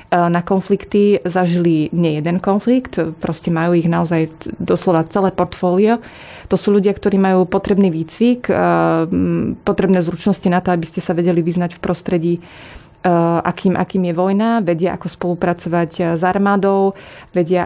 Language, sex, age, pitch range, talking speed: Slovak, female, 20-39, 175-195 Hz, 140 wpm